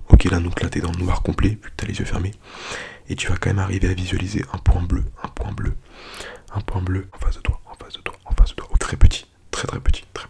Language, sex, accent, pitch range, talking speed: English, male, French, 90-100 Hz, 290 wpm